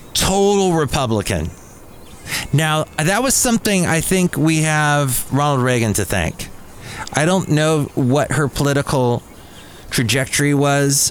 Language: English